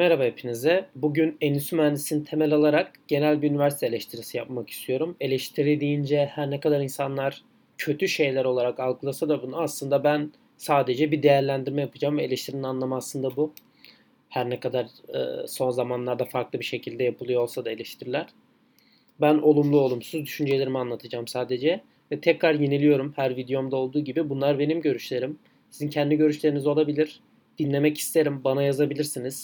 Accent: native